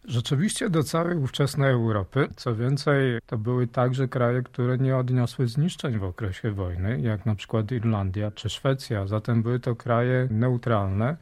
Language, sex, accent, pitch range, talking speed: Polish, male, native, 115-140 Hz, 155 wpm